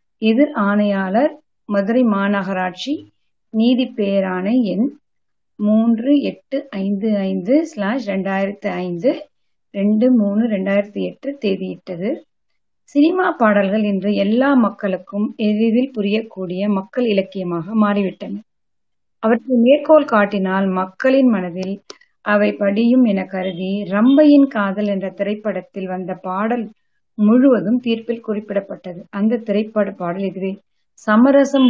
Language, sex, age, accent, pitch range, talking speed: Tamil, female, 30-49, native, 200-255 Hz, 85 wpm